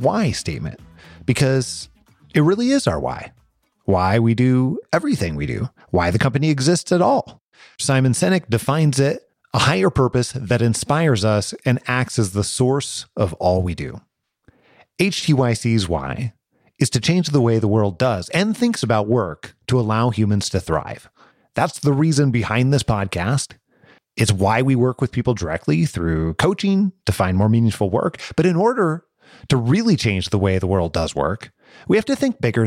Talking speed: 175 wpm